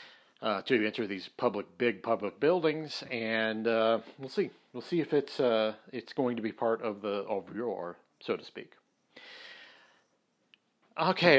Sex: male